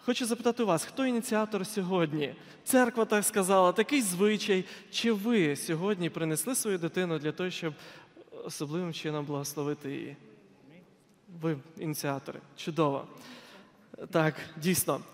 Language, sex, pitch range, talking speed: Ukrainian, male, 155-220 Hz, 120 wpm